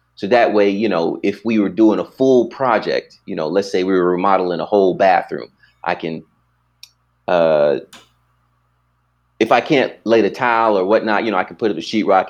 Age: 30-49